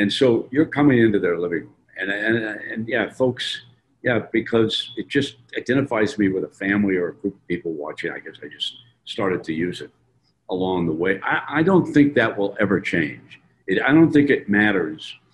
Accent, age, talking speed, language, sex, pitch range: American, 50-69, 205 wpm, English, male, 95-130 Hz